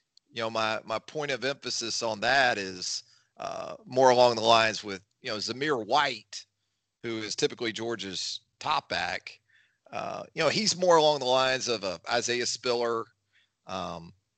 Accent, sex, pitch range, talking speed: American, male, 100-120 Hz, 165 wpm